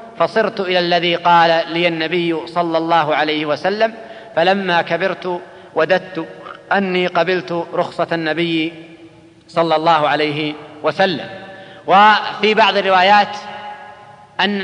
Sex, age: male, 40-59